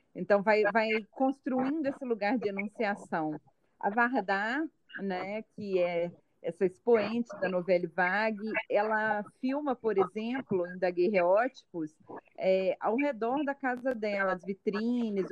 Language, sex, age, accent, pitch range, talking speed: Portuguese, female, 40-59, Brazilian, 190-235 Hz, 125 wpm